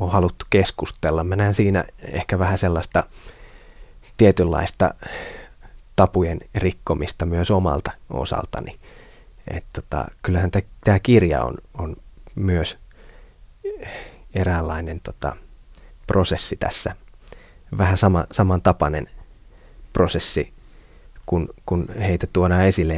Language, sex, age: Finnish, male, 20-39